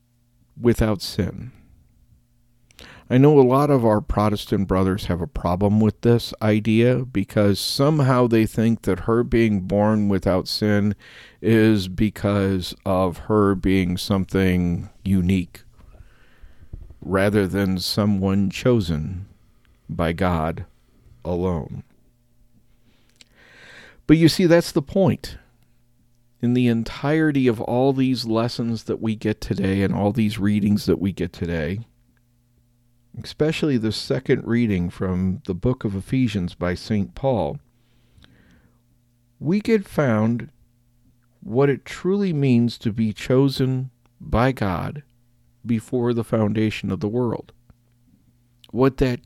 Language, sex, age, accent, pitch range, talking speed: English, male, 50-69, American, 95-120 Hz, 120 wpm